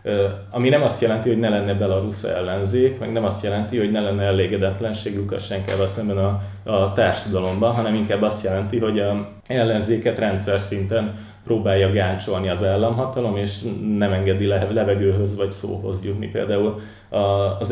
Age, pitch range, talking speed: 20-39, 100-110 Hz, 150 wpm